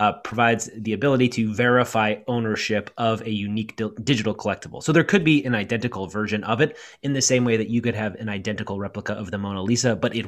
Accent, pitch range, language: American, 105-130 Hz, English